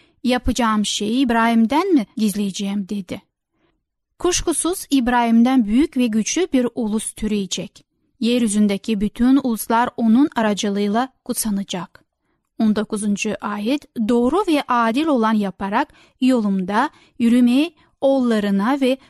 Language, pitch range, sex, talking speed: Turkish, 215-275 Hz, female, 95 wpm